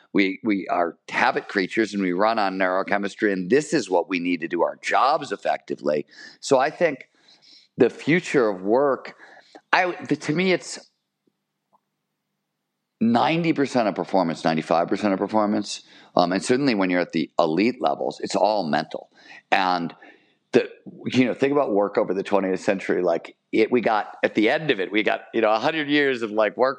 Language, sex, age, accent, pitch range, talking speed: English, male, 50-69, American, 100-135 Hz, 180 wpm